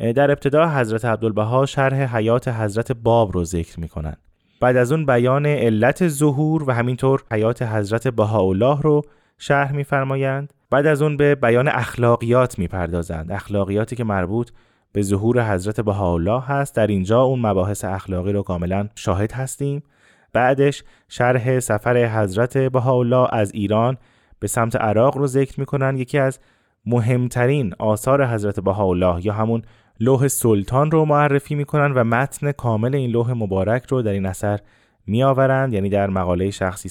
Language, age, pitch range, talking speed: Persian, 20-39, 105-135 Hz, 150 wpm